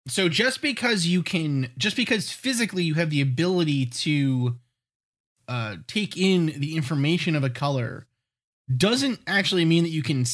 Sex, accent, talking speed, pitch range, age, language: male, American, 155 wpm, 130-180 Hz, 20-39, English